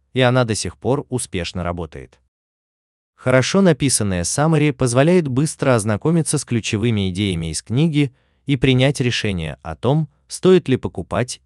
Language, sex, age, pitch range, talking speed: Russian, male, 30-49, 85-135 Hz, 135 wpm